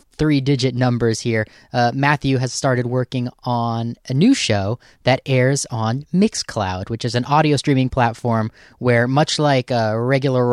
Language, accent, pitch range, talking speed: English, American, 115-135 Hz, 155 wpm